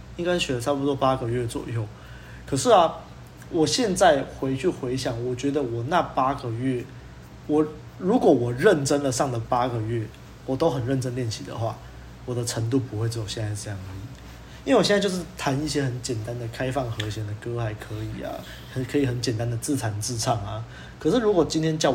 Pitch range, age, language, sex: 115-145 Hz, 20-39, Chinese, male